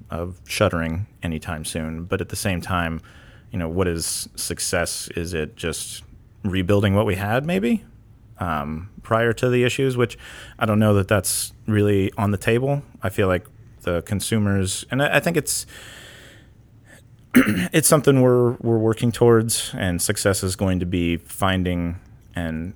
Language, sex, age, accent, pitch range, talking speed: English, male, 30-49, American, 85-115 Hz, 160 wpm